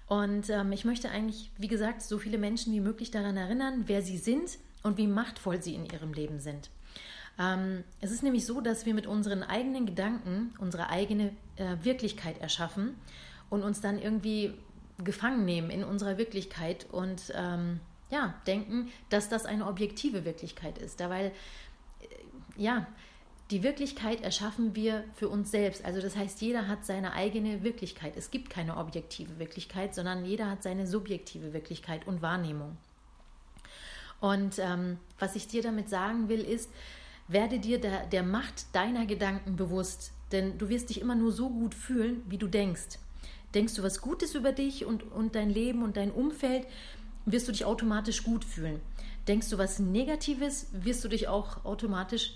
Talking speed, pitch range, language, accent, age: 170 wpm, 185-225 Hz, German, German, 40-59